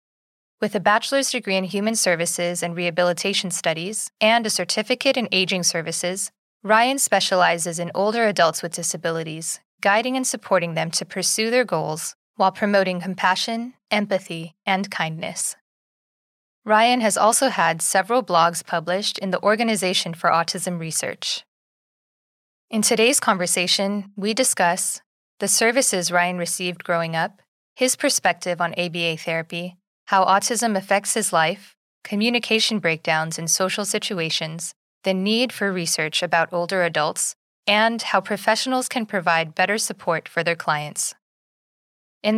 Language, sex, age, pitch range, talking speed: English, female, 20-39, 170-215 Hz, 135 wpm